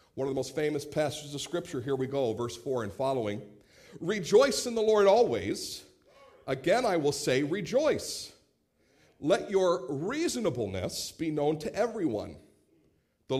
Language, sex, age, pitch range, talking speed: English, male, 50-69, 110-175 Hz, 150 wpm